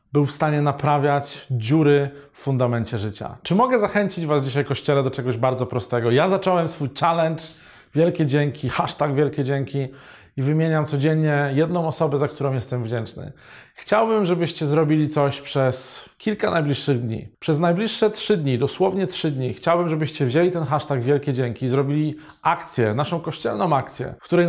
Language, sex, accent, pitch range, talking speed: Polish, male, native, 130-160 Hz, 160 wpm